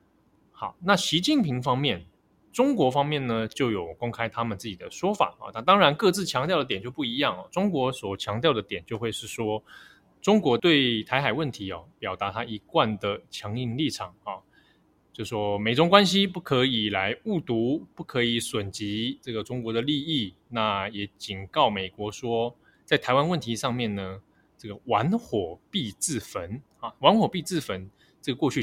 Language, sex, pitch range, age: Chinese, male, 105-155 Hz, 20-39